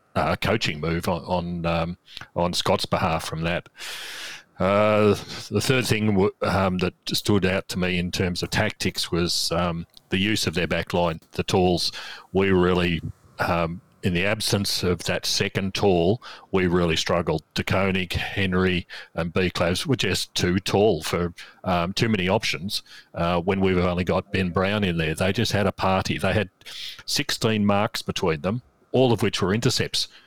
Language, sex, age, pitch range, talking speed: English, male, 40-59, 85-100 Hz, 175 wpm